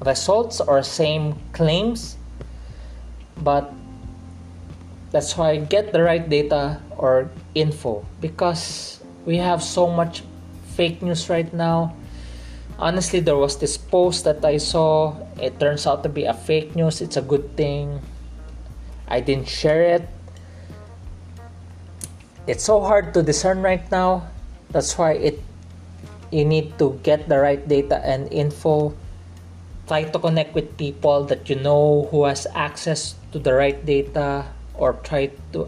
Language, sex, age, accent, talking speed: English, male, 20-39, Filipino, 140 wpm